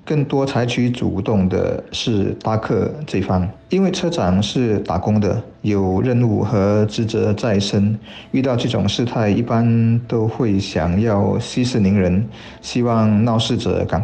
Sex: male